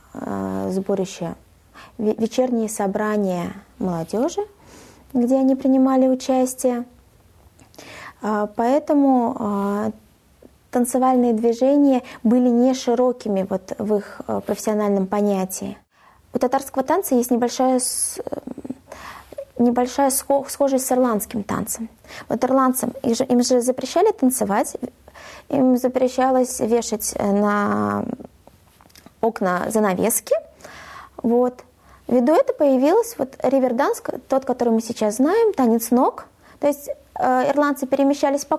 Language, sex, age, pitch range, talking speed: Russian, female, 20-39, 225-275 Hz, 90 wpm